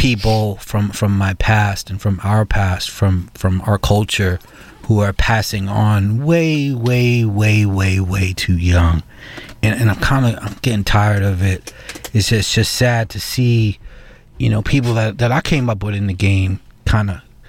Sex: male